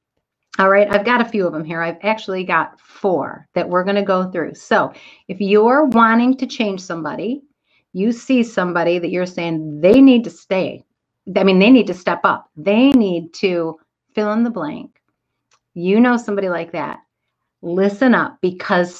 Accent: American